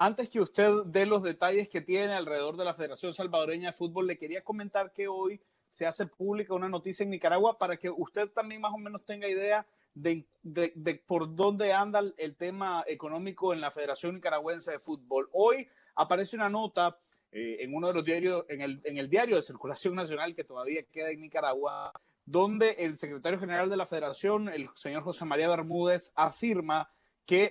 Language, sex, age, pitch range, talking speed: Spanish, male, 30-49, 165-210 Hz, 195 wpm